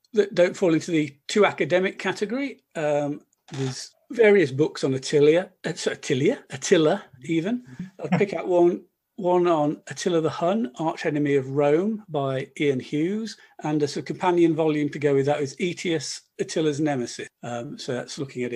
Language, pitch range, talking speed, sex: English, 135-175 Hz, 160 wpm, male